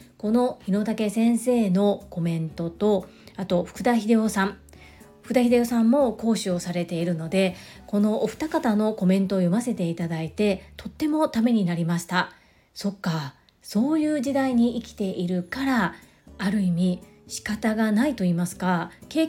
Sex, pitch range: female, 185-245 Hz